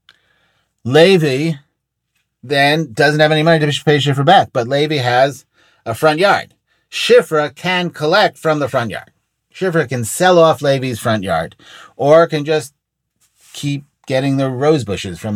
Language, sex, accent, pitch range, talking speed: English, male, American, 125-170 Hz, 150 wpm